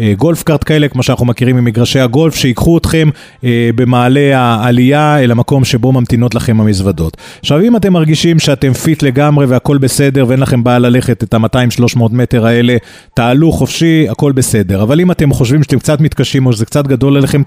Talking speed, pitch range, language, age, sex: 175 wpm, 120-145 Hz, Hebrew, 30-49, male